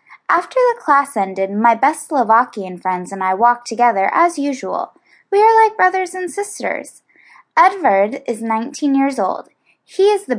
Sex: female